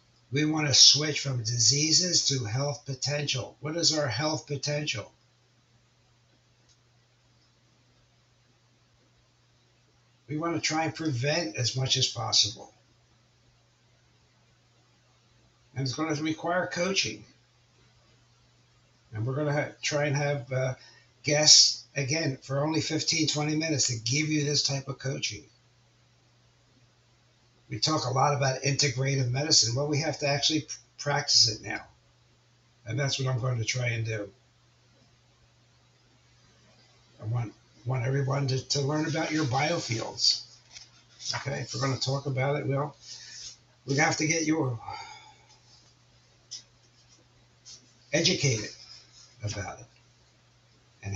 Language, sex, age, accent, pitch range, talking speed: English, male, 60-79, American, 120-145 Hz, 120 wpm